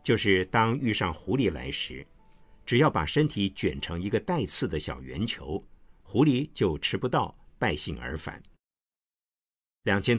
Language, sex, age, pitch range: Chinese, male, 50-69, 75-110 Hz